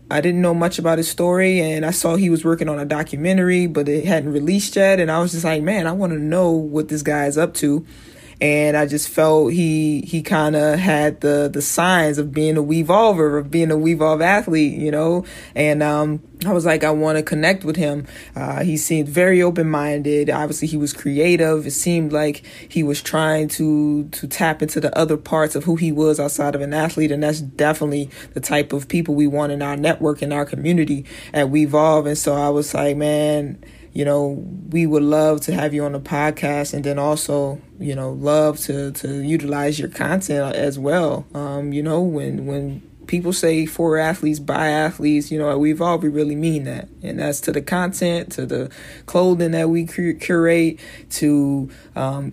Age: 20-39